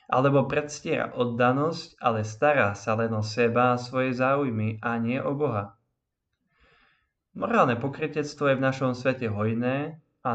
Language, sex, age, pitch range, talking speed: Slovak, male, 20-39, 115-145 Hz, 140 wpm